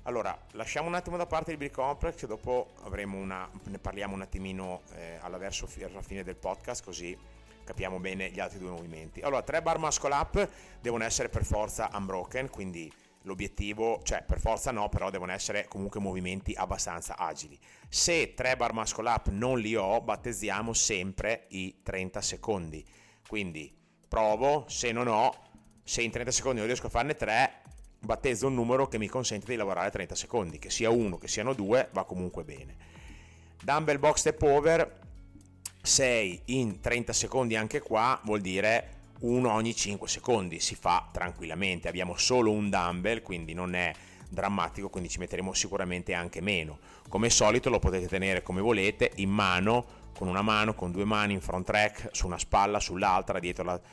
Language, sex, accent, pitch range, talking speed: Italian, male, native, 90-115 Hz, 170 wpm